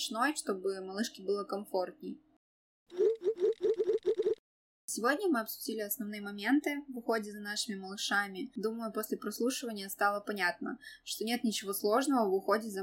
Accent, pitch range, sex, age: native, 200-255 Hz, female, 20-39